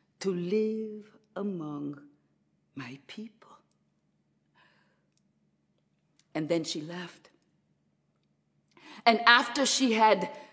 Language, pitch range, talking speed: English, 175-265 Hz, 75 wpm